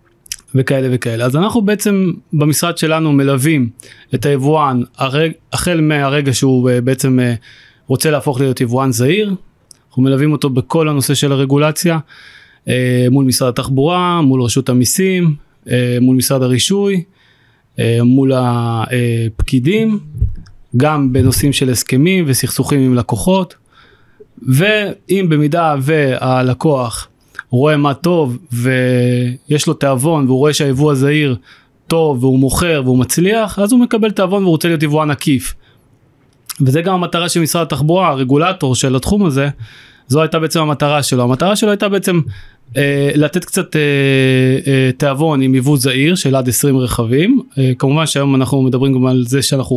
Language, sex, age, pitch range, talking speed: Hebrew, male, 30-49, 125-160 Hz, 135 wpm